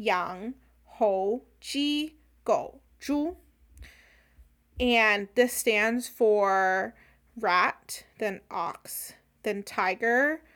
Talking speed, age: 80 wpm, 20-39